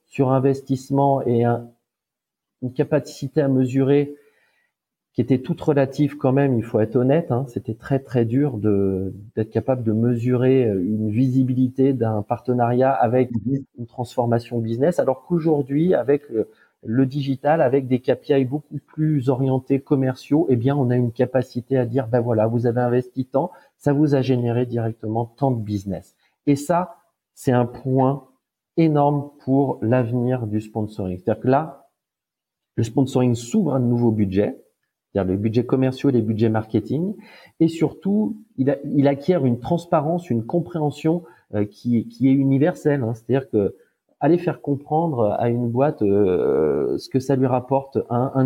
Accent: French